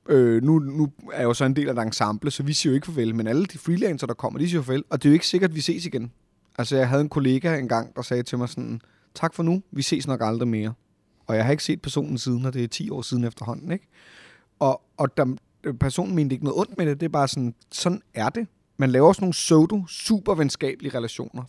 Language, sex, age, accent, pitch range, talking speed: Danish, male, 30-49, native, 120-150 Hz, 275 wpm